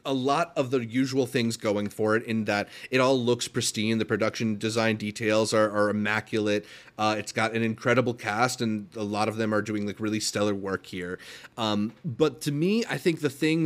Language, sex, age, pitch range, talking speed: English, male, 30-49, 110-140 Hz, 210 wpm